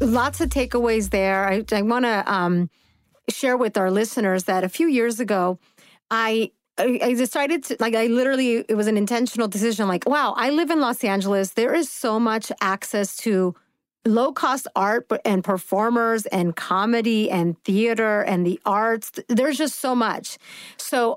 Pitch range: 200-245 Hz